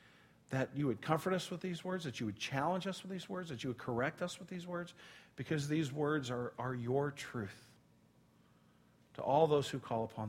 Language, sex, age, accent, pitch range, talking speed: English, male, 50-69, American, 145-205 Hz, 215 wpm